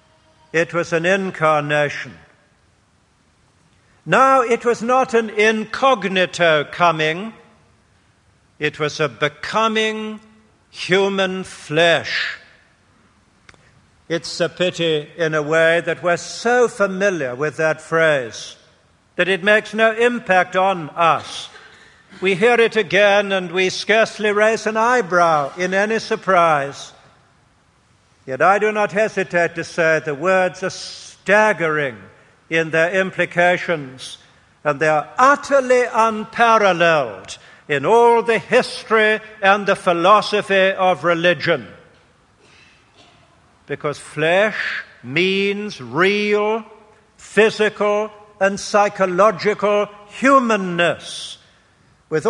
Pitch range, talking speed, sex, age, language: 165-215 Hz, 100 wpm, male, 60-79, English